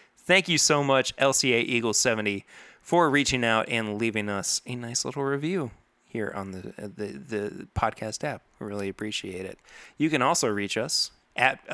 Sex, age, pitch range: male, 20-39, 105-135 Hz